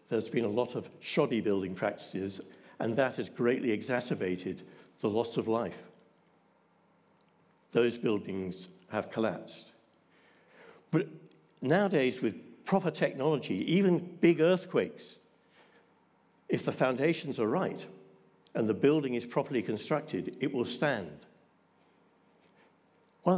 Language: English